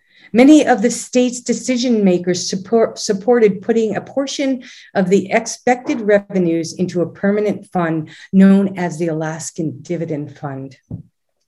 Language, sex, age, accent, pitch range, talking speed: English, female, 50-69, American, 165-230 Hz, 125 wpm